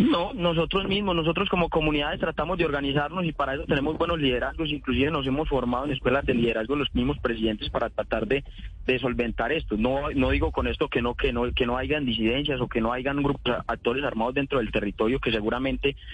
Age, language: 30-49, Spanish